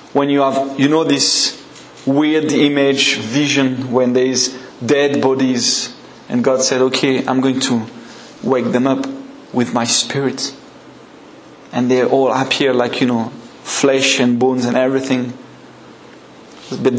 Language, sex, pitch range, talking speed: English, male, 135-175 Hz, 140 wpm